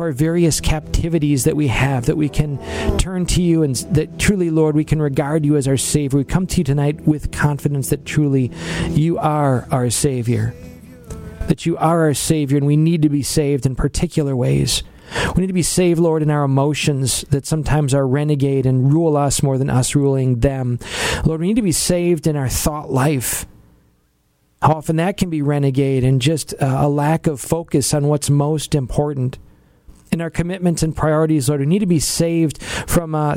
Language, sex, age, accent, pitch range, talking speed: English, male, 40-59, American, 135-165 Hz, 200 wpm